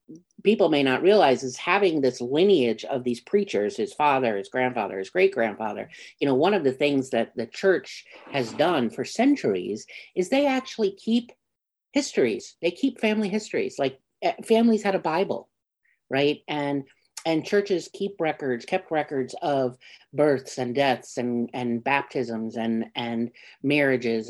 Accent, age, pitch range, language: American, 50-69, 115-150 Hz, English